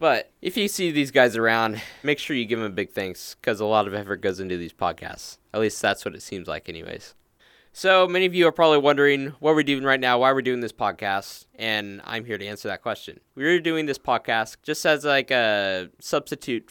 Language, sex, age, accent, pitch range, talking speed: English, male, 10-29, American, 105-130 Hz, 235 wpm